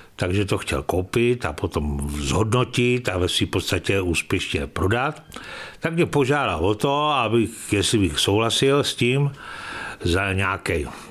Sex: male